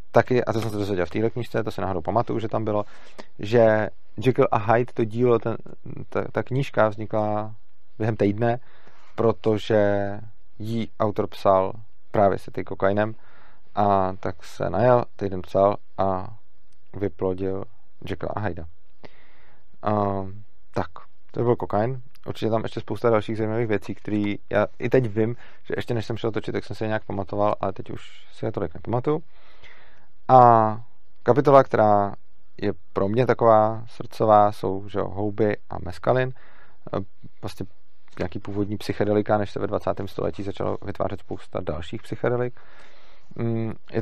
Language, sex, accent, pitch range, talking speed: Czech, male, native, 100-115 Hz, 150 wpm